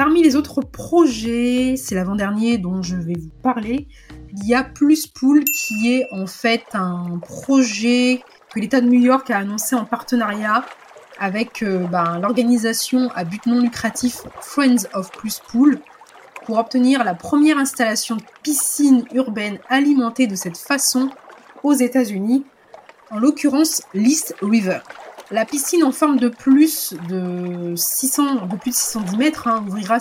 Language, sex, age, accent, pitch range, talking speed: French, female, 20-39, French, 205-260 Hz, 150 wpm